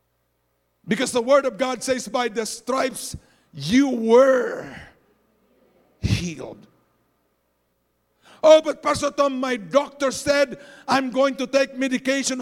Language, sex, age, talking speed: English, male, 50-69, 115 wpm